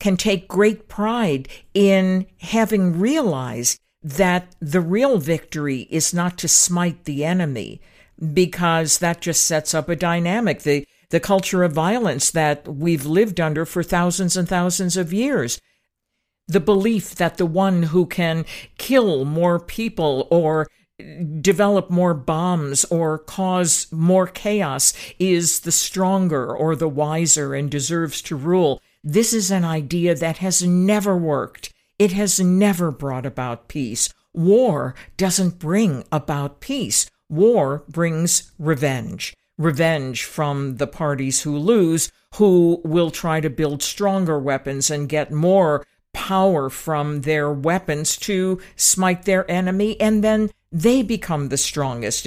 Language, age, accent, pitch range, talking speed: English, 60-79, American, 150-190 Hz, 135 wpm